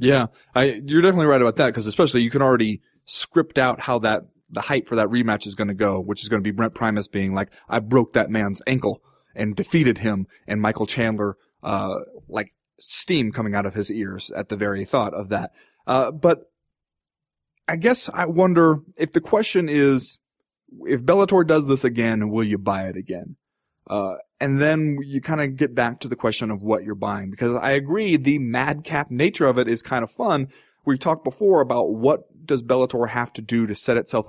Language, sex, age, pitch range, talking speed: English, male, 20-39, 105-135 Hz, 210 wpm